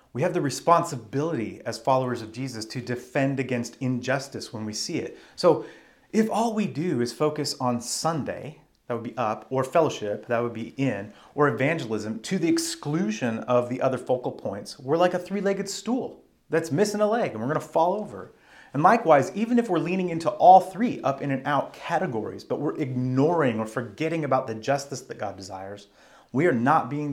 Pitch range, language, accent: 115-150 Hz, English, American